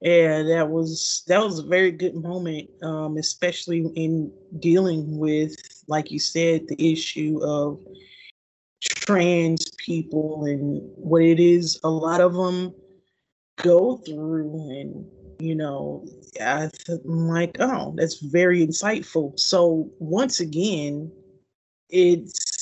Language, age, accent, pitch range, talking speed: English, 30-49, American, 155-185 Hz, 120 wpm